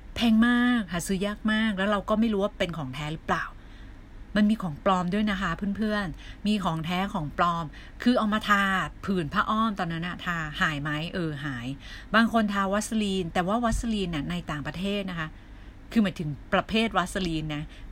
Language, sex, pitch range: Thai, female, 160-215 Hz